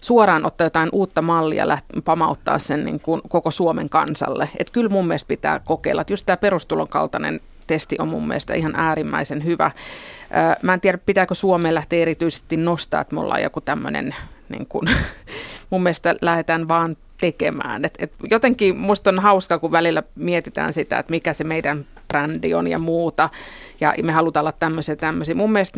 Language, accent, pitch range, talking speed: Finnish, native, 160-185 Hz, 170 wpm